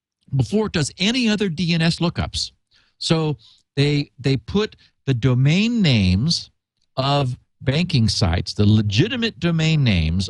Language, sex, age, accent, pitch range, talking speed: English, male, 50-69, American, 110-165 Hz, 120 wpm